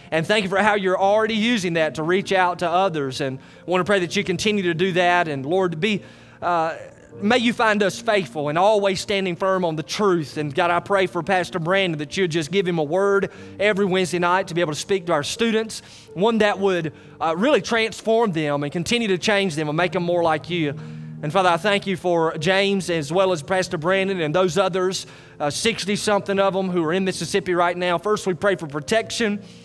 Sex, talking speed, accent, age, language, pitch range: male, 235 wpm, American, 30-49, English, 165-200 Hz